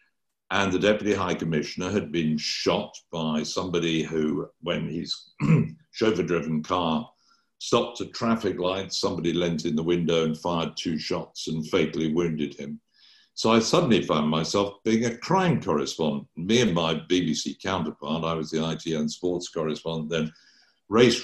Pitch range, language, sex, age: 80-100 Hz, English, male, 60-79